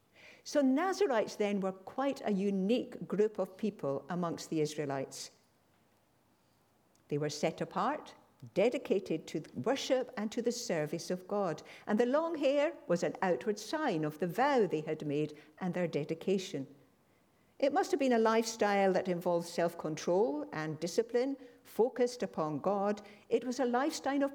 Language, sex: English, female